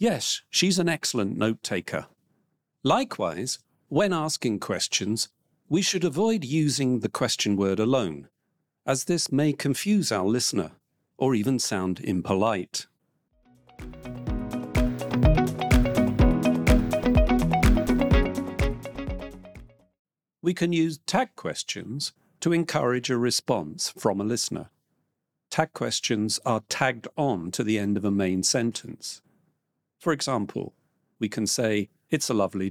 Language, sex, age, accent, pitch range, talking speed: English, male, 50-69, British, 105-155 Hz, 110 wpm